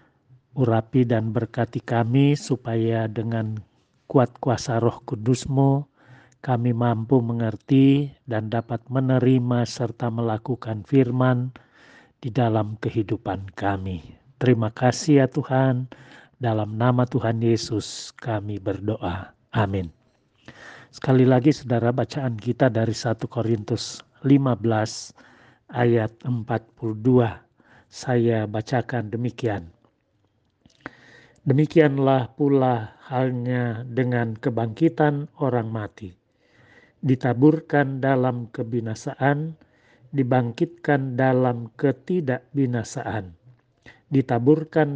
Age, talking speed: 40-59, 85 wpm